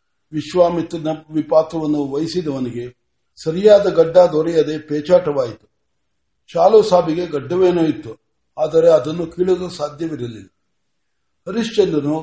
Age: 60-79